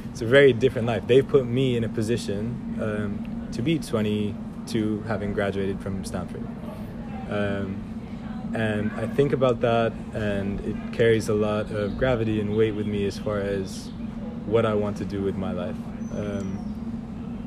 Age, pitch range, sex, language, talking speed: 20-39, 105-140 Hz, male, English, 165 wpm